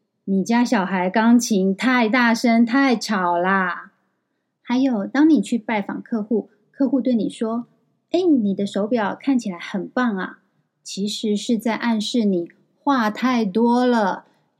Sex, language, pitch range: female, Chinese, 200-270 Hz